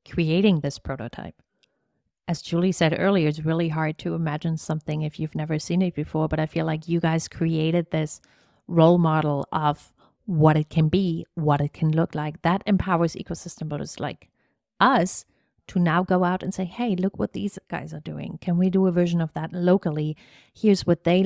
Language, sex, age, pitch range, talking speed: English, female, 30-49, 155-185 Hz, 195 wpm